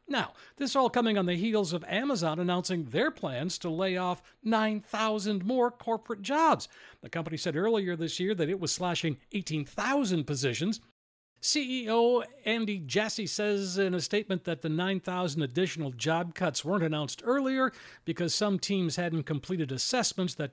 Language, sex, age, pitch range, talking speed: English, male, 60-79, 165-225 Hz, 160 wpm